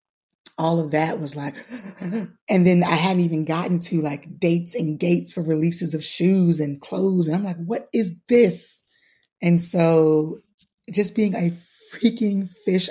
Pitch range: 165-200 Hz